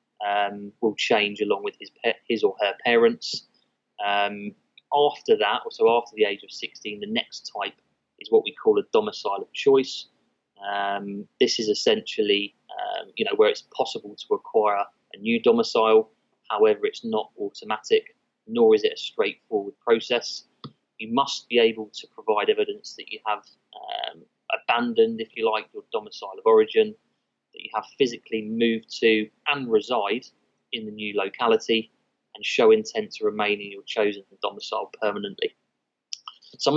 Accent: British